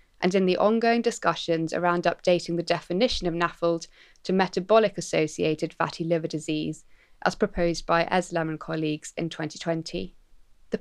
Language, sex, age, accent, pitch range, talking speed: English, female, 20-39, British, 165-210 Hz, 140 wpm